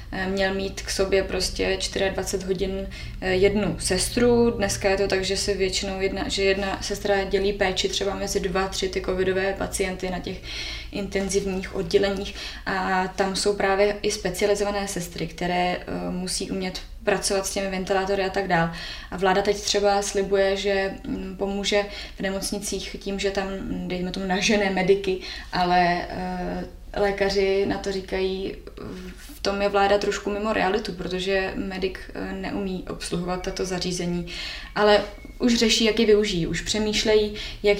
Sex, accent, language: female, native, Czech